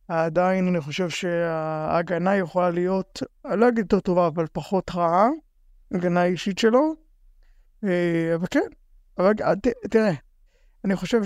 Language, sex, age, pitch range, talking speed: Hebrew, male, 50-69, 175-205 Hz, 135 wpm